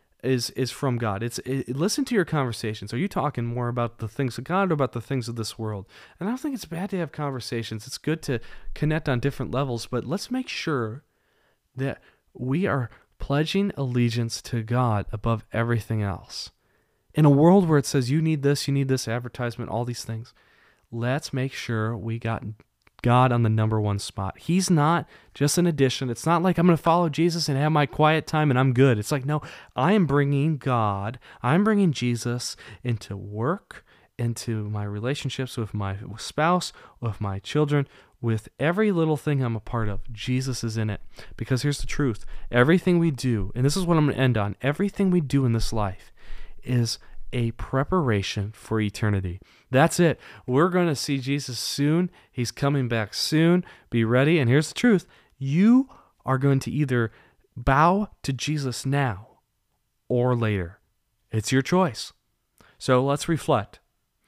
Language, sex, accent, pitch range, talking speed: English, male, American, 115-150 Hz, 185 wpm